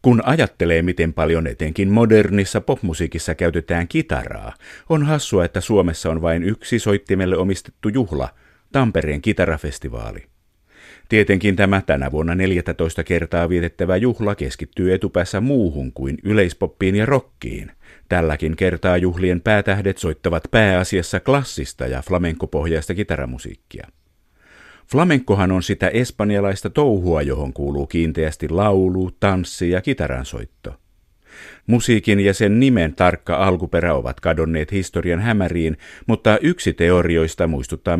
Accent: native